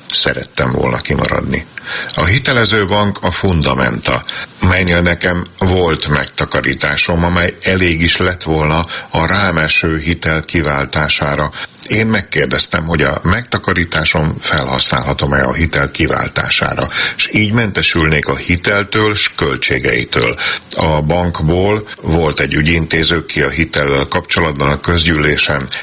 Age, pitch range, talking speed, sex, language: 60-79, 75-90 Hz, 110 wpm, male, Hungarian